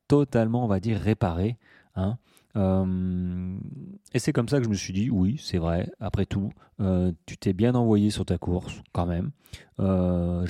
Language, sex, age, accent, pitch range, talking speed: French, male, 30-49, French, 100-125 Hz, 185 wpm